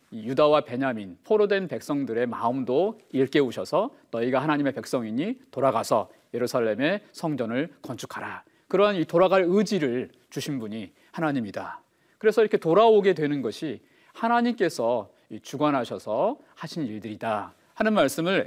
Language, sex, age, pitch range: Korean, male, 40-59, 130-215 Hz